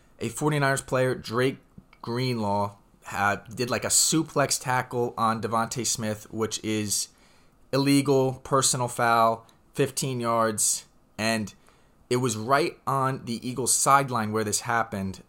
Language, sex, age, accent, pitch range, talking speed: English, male, 20-39, American, 115-135 Hz, 120 wpm